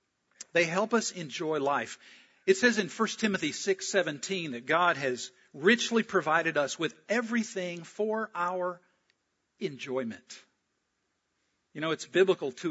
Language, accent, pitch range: English, American, 150-215 Hz